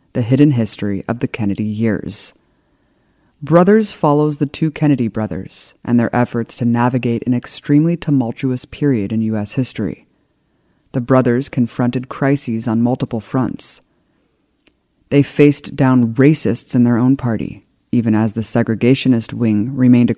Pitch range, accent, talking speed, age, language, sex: 110-135 Hz, American, 140 wpm, 30-49, English, female